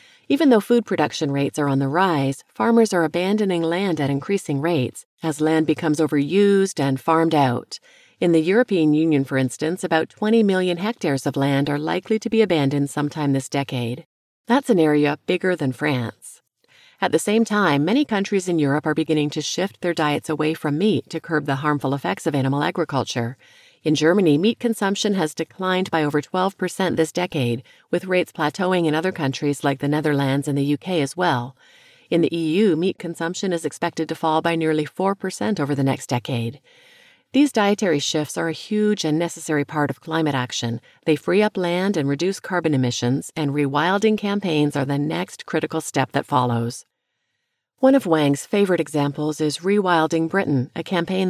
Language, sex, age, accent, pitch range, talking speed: English, female, 40-59, American, 145-185 Hz, 180 wpm